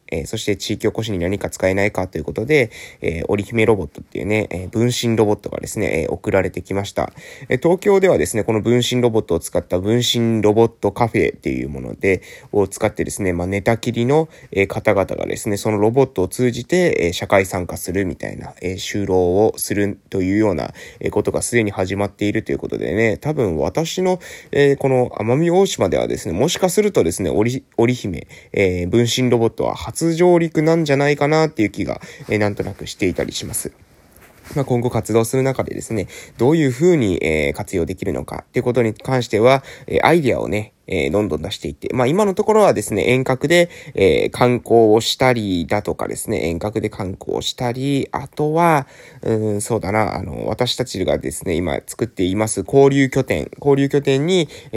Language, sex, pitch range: Japanese, male, 100-135 Hz